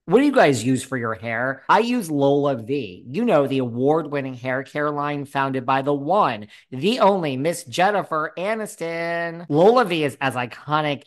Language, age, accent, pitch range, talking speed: English, 40-59, American, 125-160 Hz, 180 wpm